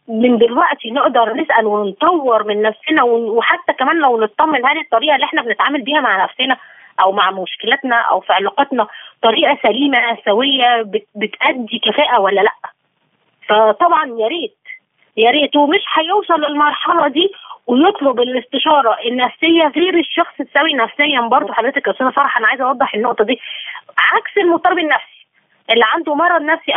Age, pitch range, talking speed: 20-39, 235-335 Hz, 145 wpm